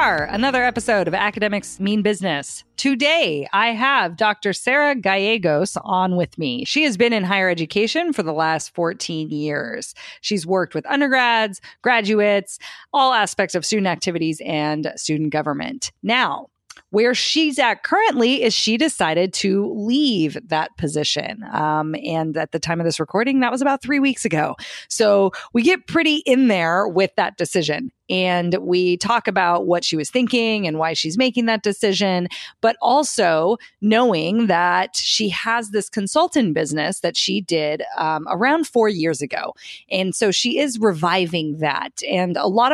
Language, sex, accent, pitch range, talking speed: English, female, American, 170-240 Hz, 160 wpm